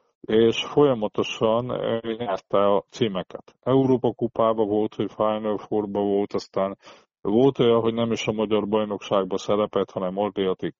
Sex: male